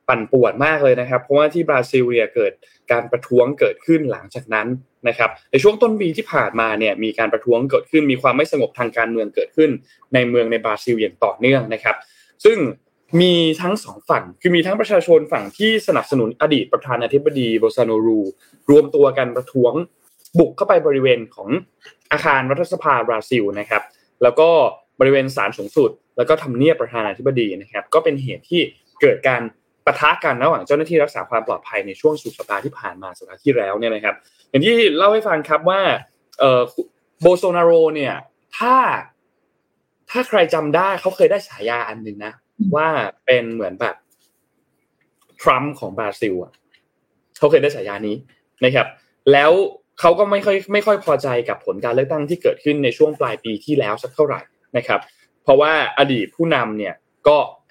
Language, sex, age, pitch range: Thai, male, 20-39, 120-200 Hz